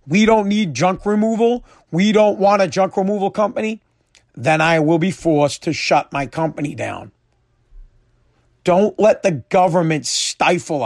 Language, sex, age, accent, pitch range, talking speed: English, male, 40-59, American, 165-210 Hz, 150 wpm